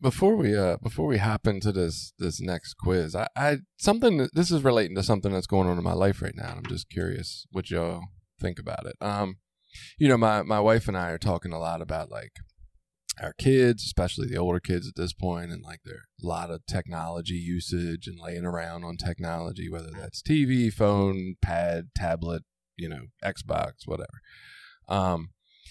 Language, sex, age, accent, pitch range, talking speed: English, male, 20-39, American, 90-130 Hz, 195 wpm